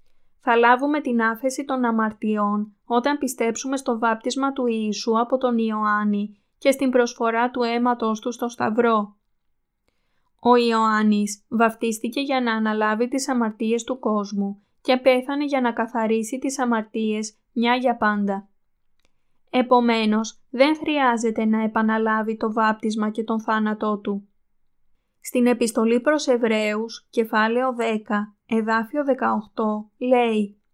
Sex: female